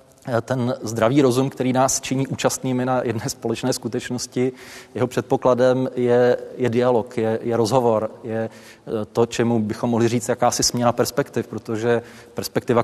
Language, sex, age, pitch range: Czech, male, 30-49, 115-125 Hz